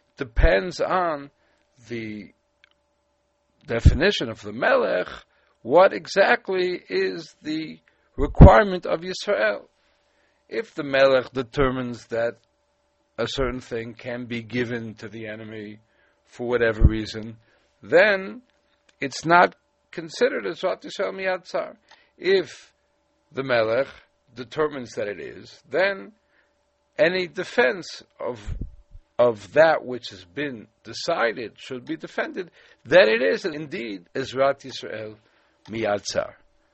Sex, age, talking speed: male, 60-79, 105 wpm